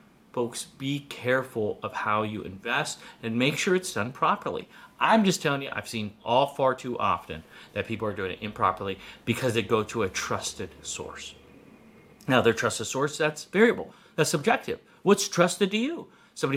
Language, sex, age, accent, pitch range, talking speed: English, male, 30-49, American, 120-180 Hz, 180 wpm